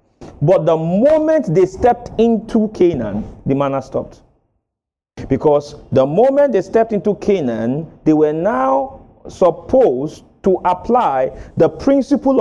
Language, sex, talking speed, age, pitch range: English, male, 120 wpm, 40-59, 140-215 Hz